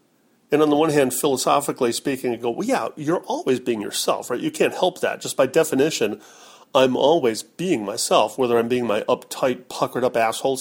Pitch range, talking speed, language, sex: 115-150 Hz, 200 wpm, English, male